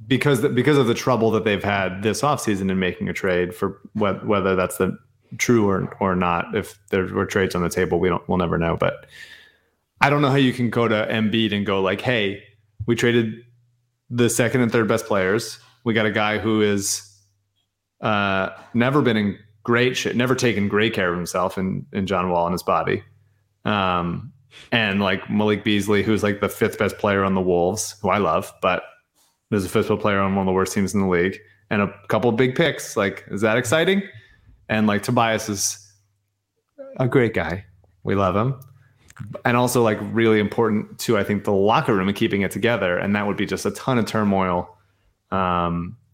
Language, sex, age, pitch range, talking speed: English, male, 30-49, 95-115 Hz, 205 wpm